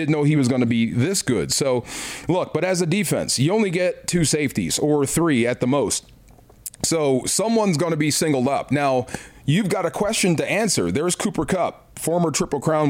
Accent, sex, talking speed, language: American, male, 210 wpm, English